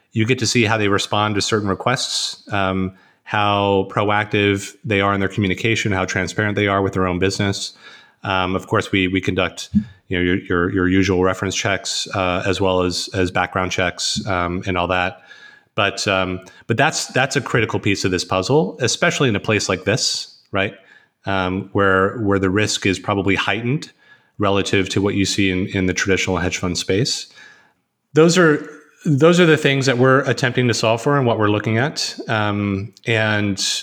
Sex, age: male, 30-49